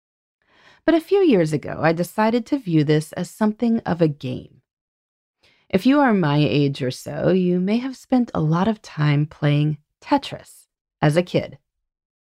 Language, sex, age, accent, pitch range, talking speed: English, female, 30-49, American, 145-210 Hz, 170 wpm